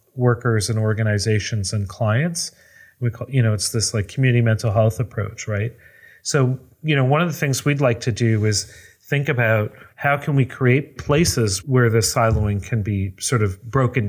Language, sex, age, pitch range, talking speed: English, male, 40-59, 105-125 Hz, 185 wpm